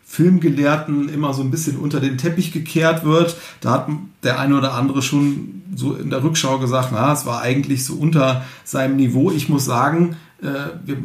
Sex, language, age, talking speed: male, German, 50-69, 185 wpm